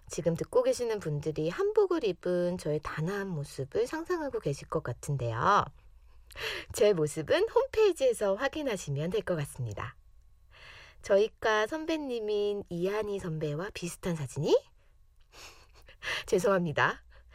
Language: Korean